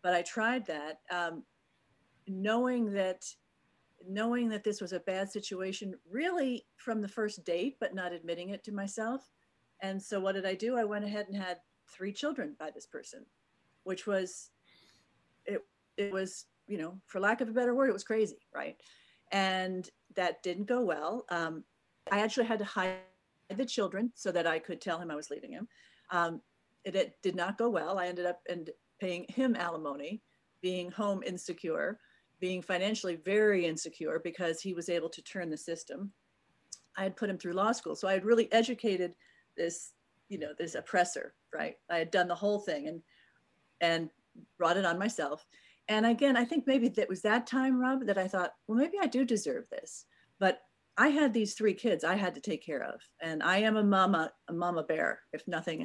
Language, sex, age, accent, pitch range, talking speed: English, female, 50-69, American, 175-225 Hz, 195 wpm